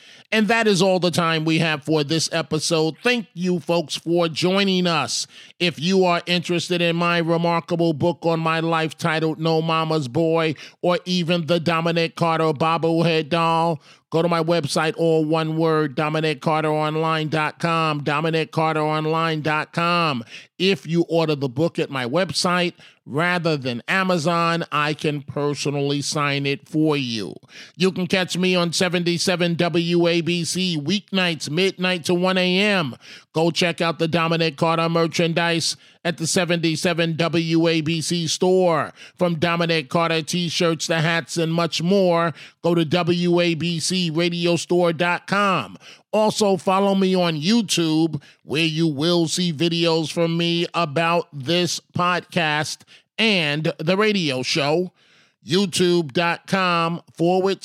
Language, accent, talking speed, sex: English, American, 130 wpm, male